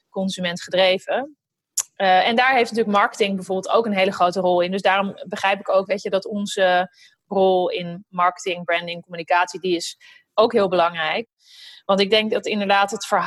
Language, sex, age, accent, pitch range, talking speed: Dutch, female, 30-49, Dutch, 190-225 Hz, 175 wpm